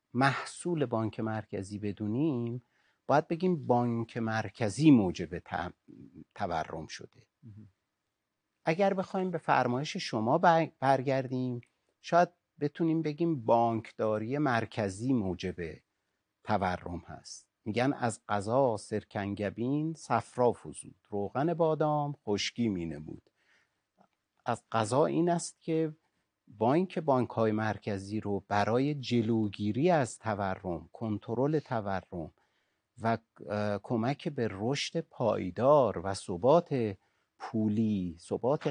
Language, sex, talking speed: Persian, male, 95 wpm